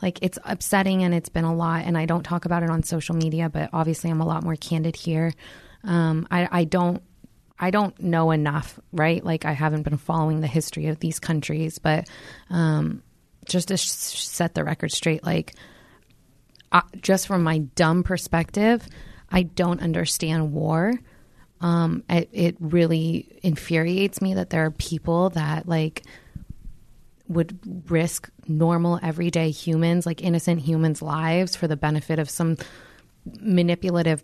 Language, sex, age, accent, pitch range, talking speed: English, female, 20-39, American, 160-180 Hz, 160 wpm